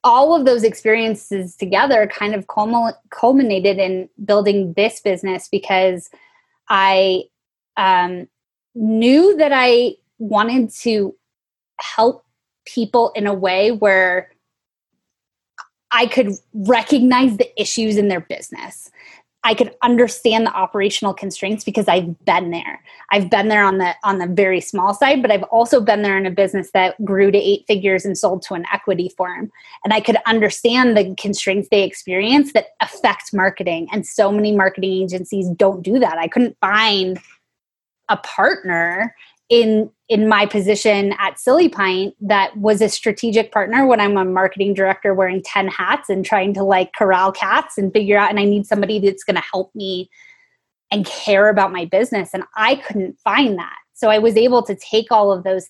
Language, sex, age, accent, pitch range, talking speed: English, female, 20-39, American, 195-235 Hz, 165 wpm